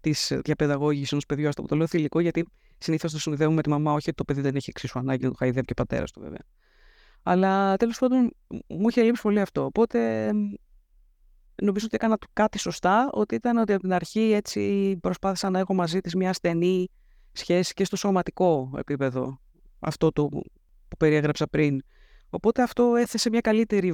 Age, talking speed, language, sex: 20-39, 190 wpm, Greek, female